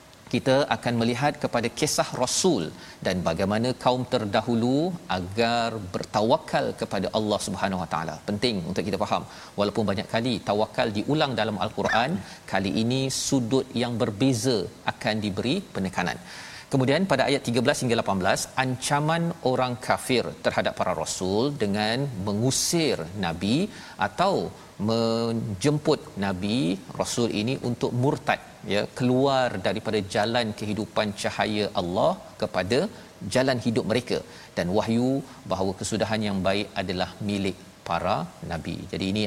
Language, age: Malayalam, 40-59